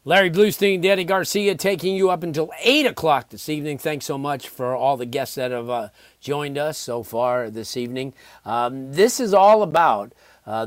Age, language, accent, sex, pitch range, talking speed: 40-59, English, American, male, 115-145 Hz, 190 wpm